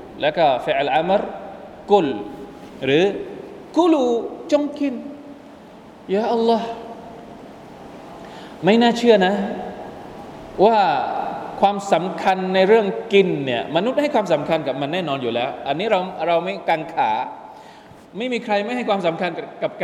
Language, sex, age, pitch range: Thai, male, 20-39, 170-255 Hz